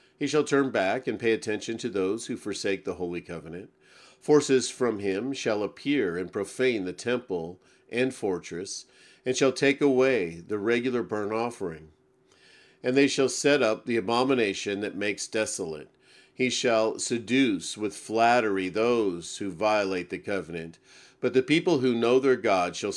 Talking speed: 160 wpm